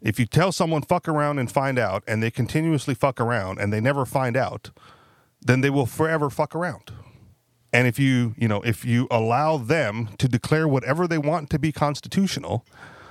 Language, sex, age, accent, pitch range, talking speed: English, male, 40-59, American, 115-150 Hz, 190 wpm